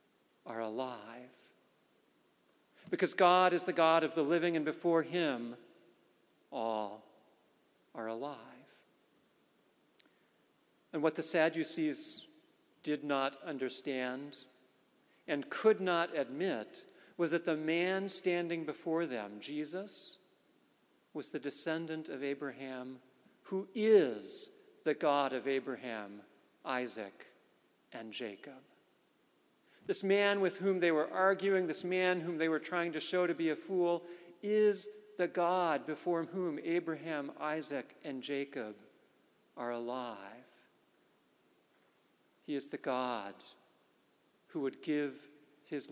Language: English